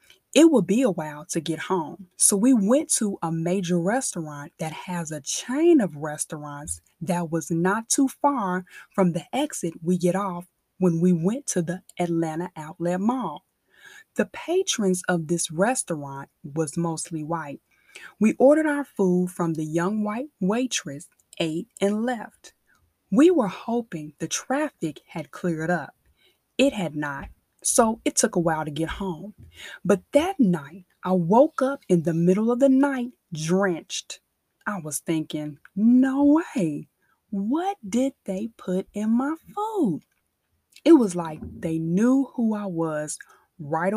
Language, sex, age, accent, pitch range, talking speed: English, female, 20-39, American, 170-250 Hz, 155 wpm